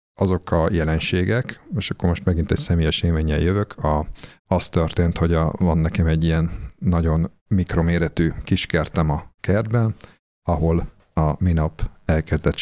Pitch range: 80-100 Hz